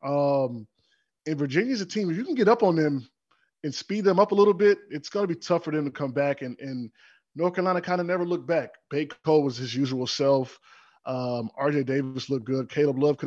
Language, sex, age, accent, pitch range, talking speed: English, male, 20-39, American, 130-175 Hz, 225 wpm